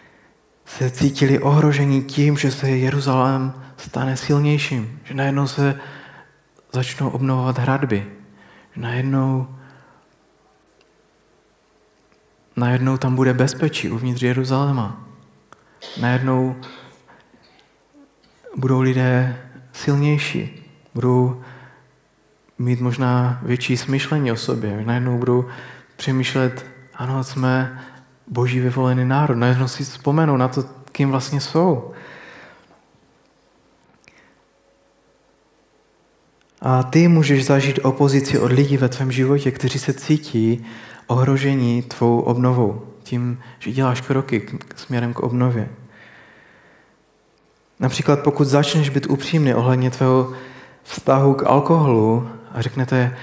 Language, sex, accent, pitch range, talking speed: Czech, male, native, 125-140 Hz, 95 wpm